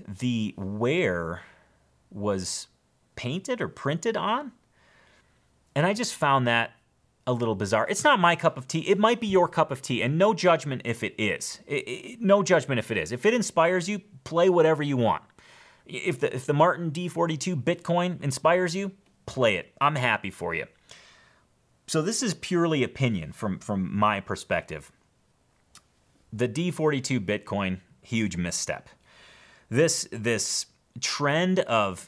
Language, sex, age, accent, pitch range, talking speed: English, male, 30-49, American, 110-165 Hz, 150 wpm